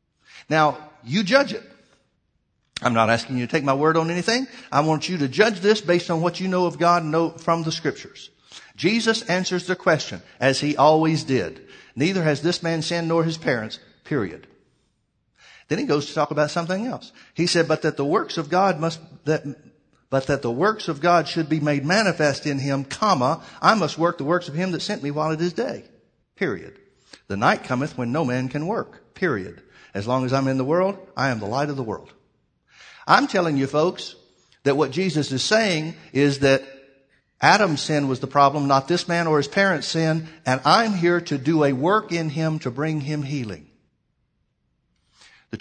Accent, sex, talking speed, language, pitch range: American, male, 205 wpm, English, 135-170 Hz